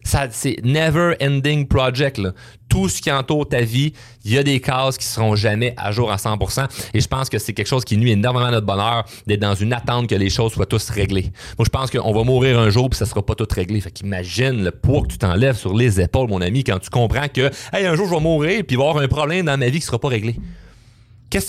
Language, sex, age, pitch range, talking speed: French, male, 30-49, 110-135 Hz, 280 wpm